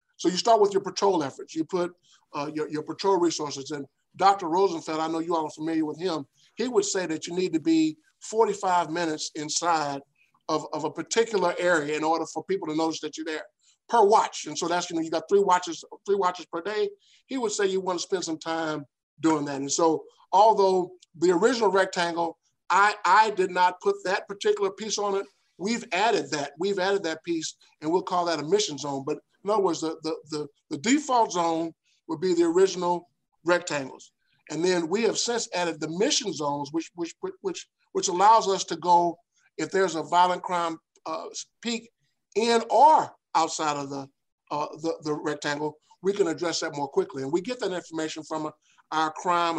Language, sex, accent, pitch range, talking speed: English, male, American, 155-200 Hz, 205 wpm